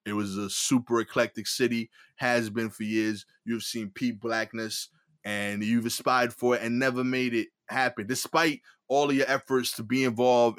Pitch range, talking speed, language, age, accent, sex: 110-130 Hz, 180 wpm, English, 20-39, American, male